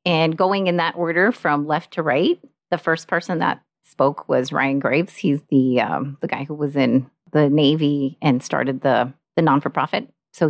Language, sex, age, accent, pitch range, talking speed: English, female, 30-49, American, 145-190 Hz, 190 wpm